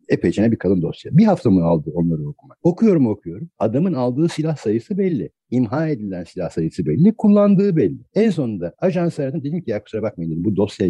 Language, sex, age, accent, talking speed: Turkish, male, 60-79, native, 195 wpm